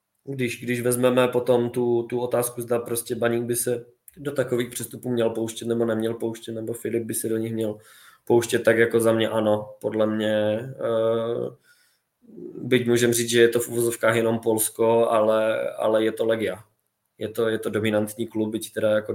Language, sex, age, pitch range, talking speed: Czech, male, 20-39, 110-120 Hz, 190 wpm